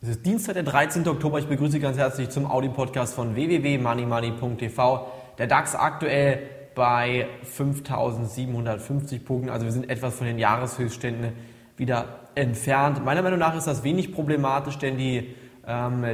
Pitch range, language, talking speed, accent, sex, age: 120-140 Hz, German, 150 wpm, German, male, 20-39